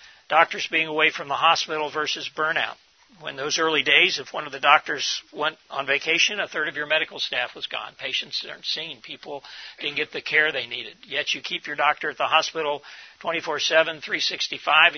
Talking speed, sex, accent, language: 190 wpm, male, American, English